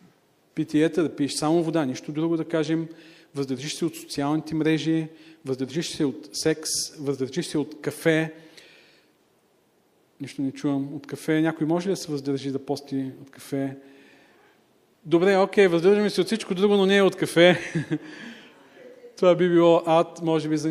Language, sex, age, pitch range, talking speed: Bulgarian, male, 40-59, 145-170 Hz, 160 wpm